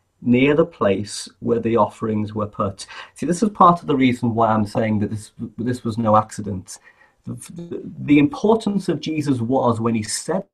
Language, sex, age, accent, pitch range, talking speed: English, male, 40-59, British, 105-150 Hz, 190 wpm